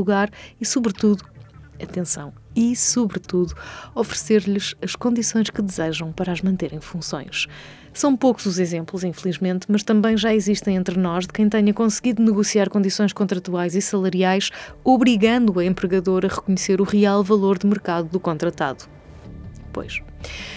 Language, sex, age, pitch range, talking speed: Portuguese, female, 20-39, 175-215 Hz, 140 wpm